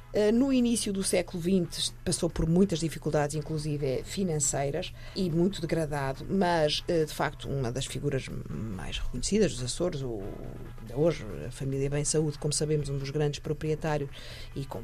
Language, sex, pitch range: Portuguese, female, 140-170 Hz